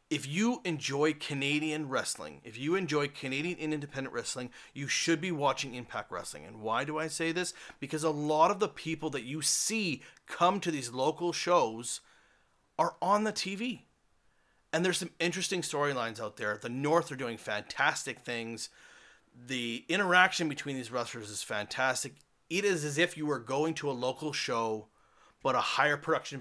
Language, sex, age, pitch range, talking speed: English, male, 30-49, 120-160 Hz, 175 wpm